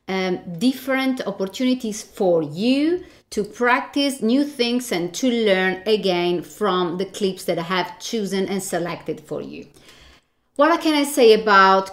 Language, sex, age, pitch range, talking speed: English, female, 30-49, 195-255 Hz, 145 wpm